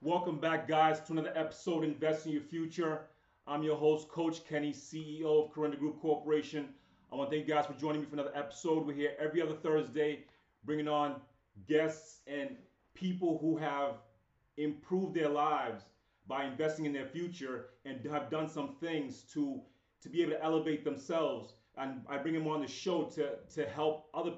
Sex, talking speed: male, 185 wpm